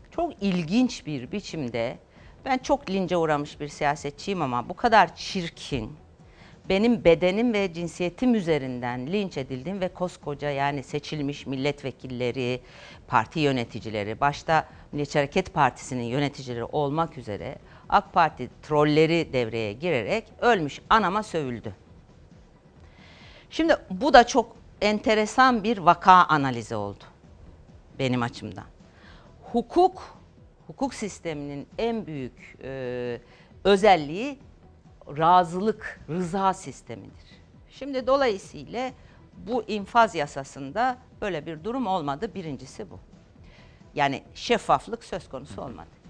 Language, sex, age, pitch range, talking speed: Turkish, female, 50-69, 140-220 Hz, 105 wpm